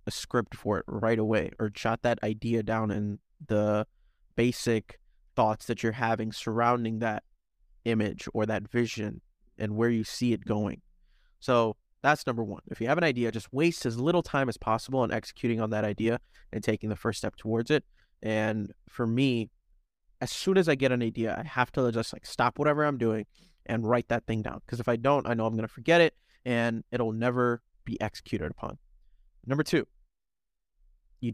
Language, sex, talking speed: English, male, 195 wpm